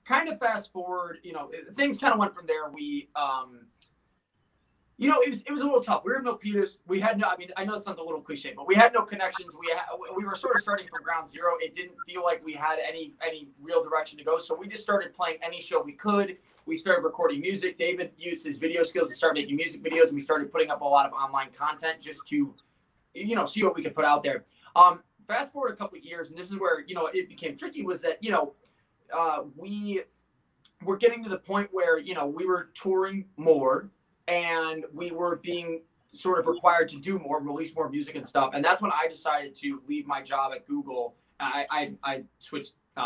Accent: American